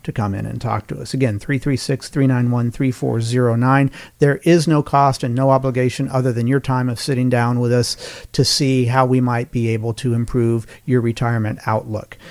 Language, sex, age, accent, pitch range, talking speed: English, male, 40-59, American, 120-150 Hz, 180 wpm